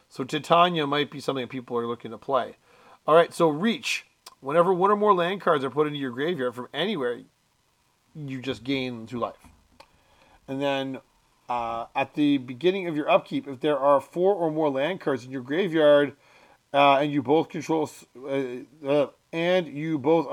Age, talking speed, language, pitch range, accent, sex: 40-59, 185 wpm, English, 135-165 Hz, American, male